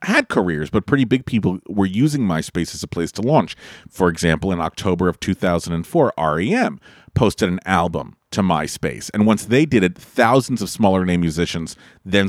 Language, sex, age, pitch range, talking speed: English, male, 40-59, 85-115 Hz, 180 wpm